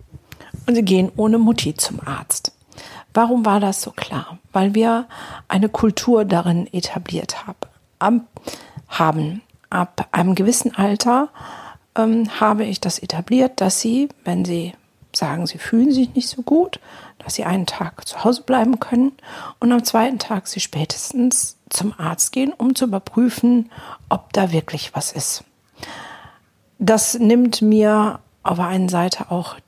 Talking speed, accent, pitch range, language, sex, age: 150 wpm, German, 180-235 Hz, German, female, 50-69